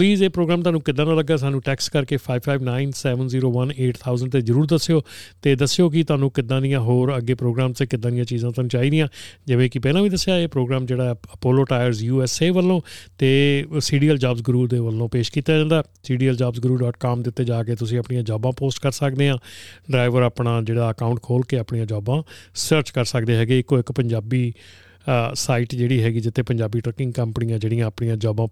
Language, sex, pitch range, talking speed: Punjabi, male, 120-140 Hz, 185 wpm